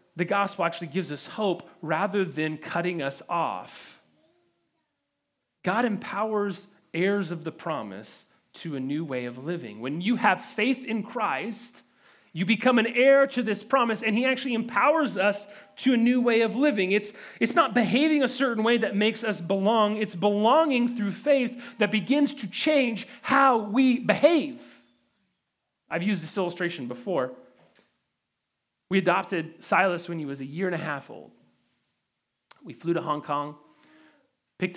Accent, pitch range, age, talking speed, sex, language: American, 170-240 Hz, 30-49, 160 wpm, male, English